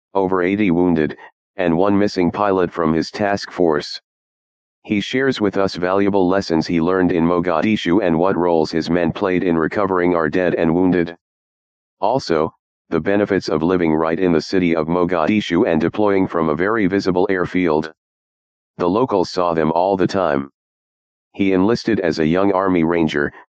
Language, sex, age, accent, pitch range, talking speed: English, male, 40-59, American, 80-95 Hz, 165 wpm